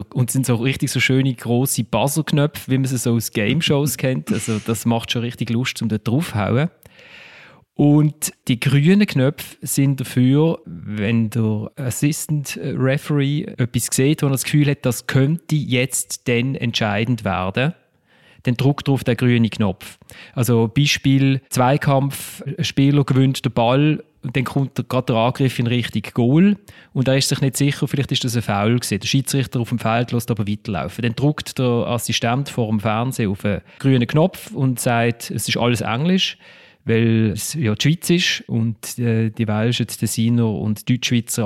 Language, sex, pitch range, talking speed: German, male, 115-140 Hz, 175 wpm